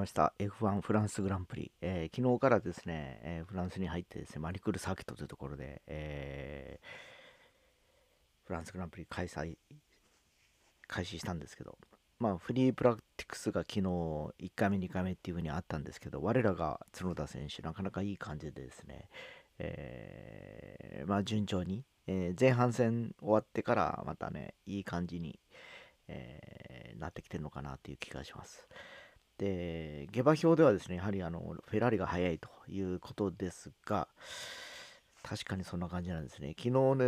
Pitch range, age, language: 85-115 Hz, 40-59, Japanese